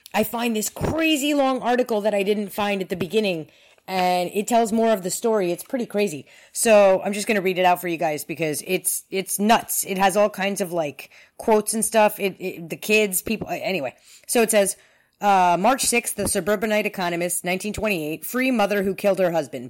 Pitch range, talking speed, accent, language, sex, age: 175-215 Hz, 210 wpm, American, English, female, 30-49